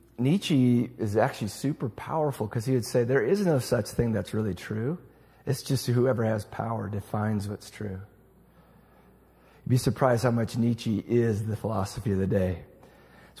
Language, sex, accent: English, male, American